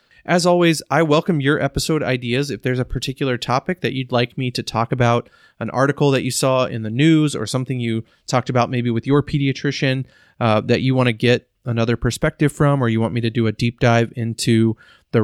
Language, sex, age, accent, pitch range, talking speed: English, male, 30-49, American, 115-130 Hz, 220 wpm